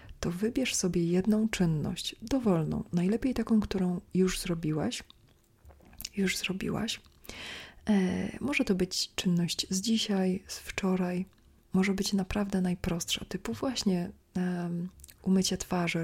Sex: female